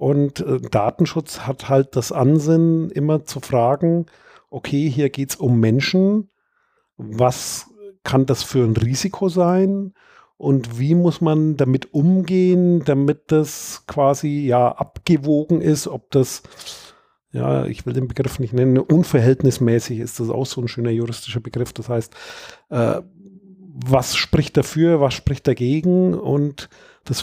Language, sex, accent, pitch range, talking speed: German, male, German, 130-165 Hz, 140 wpm